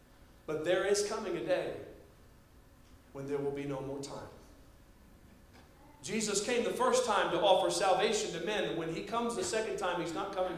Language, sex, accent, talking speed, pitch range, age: English, male, American, 180 wpm, 140-195 Hz, 40-59